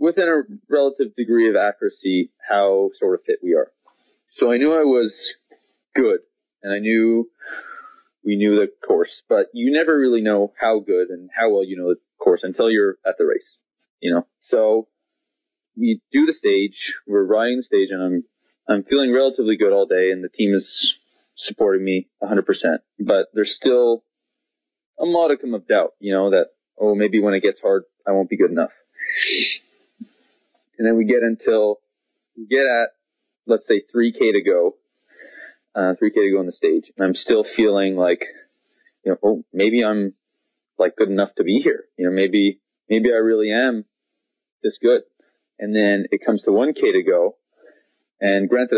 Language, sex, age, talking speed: English, male, 20-39, 180 wpm